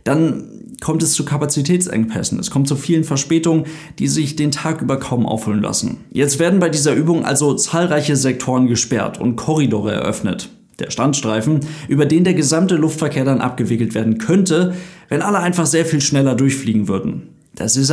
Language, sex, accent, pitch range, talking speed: German, male, German, 125-155 Hz, 170 wpm